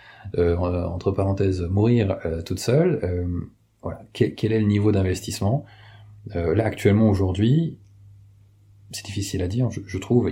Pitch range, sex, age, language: 90-115 Hz, male, 30-49, French